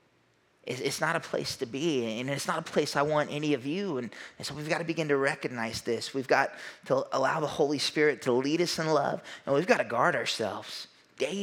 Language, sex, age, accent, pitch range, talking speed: English, male, 30-49, American, 115-150 Hz, 230 wpm